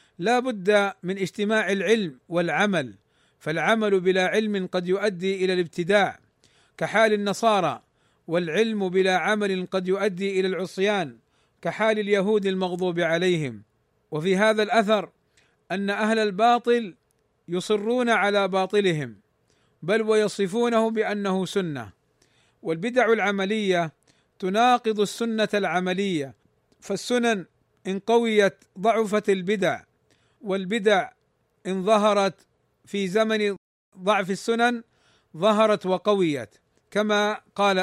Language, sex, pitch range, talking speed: Arabic, male, 180-220 Hz, 95 wpm